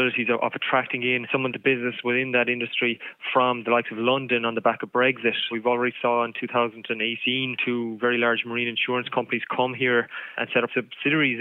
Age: 20-39